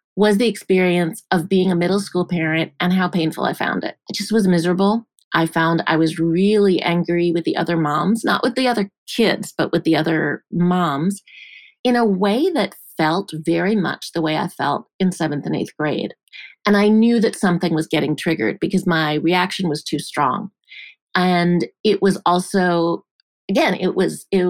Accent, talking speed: American, 190 wpm